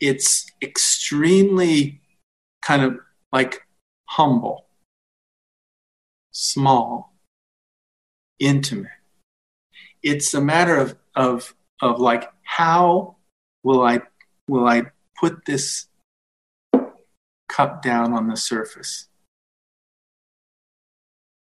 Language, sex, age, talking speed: English, male, 50-69, 75 wpm